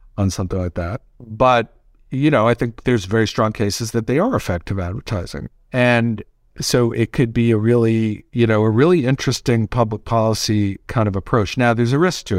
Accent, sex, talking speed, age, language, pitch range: American, male, 195 wpm, 50-69, English, 95-115 Hz